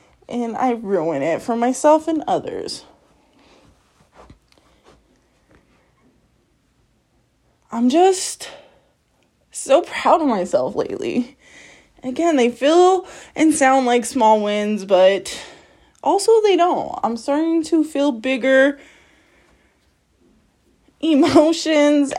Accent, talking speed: American, 90 wpm